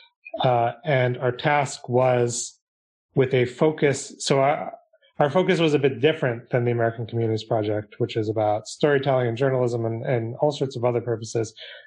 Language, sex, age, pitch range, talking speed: English, male, 30-49, 115-140 Hz, 170 wpm